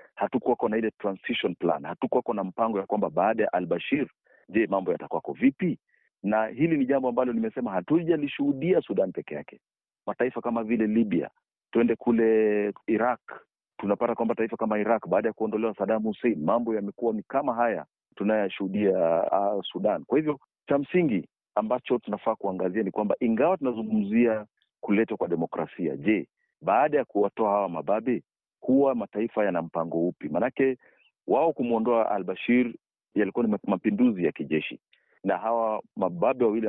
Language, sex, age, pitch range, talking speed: Swahili, male, 40-59, 100-120 Hz, 145 wpm